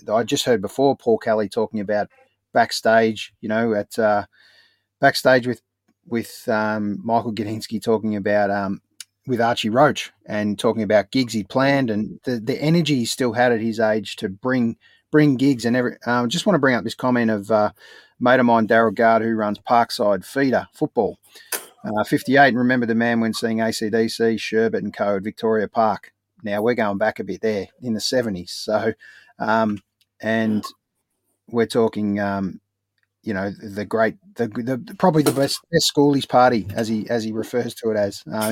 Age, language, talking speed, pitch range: 30-49, English, 190 wpm, 105-130 Hz